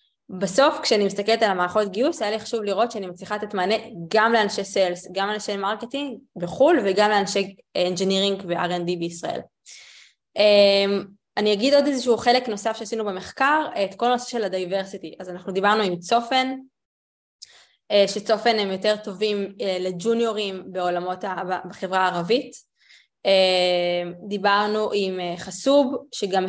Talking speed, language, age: 125 wpm, Hebrew, 20-39